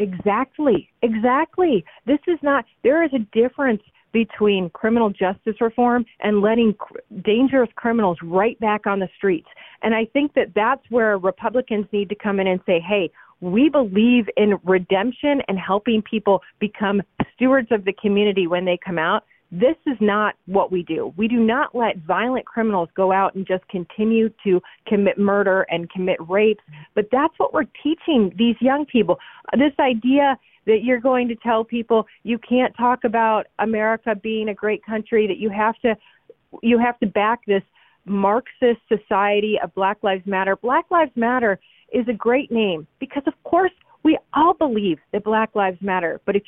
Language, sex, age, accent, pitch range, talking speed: English, female, 40-59, American, 200-250 Hz, 175 wpm